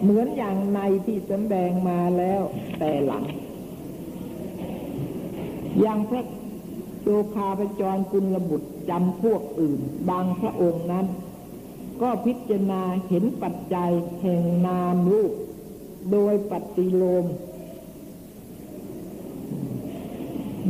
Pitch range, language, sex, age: 180-205 Hz, Thai, female, 60-79